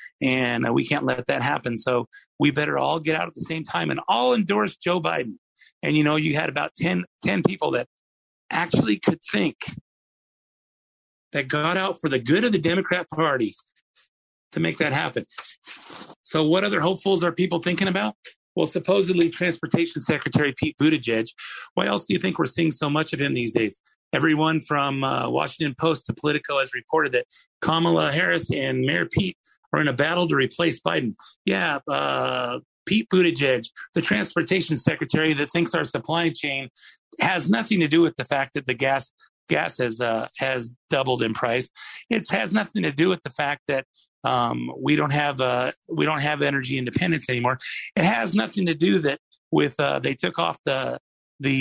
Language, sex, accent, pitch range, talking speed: English, male, American, 135-175 Hz, 185 wpm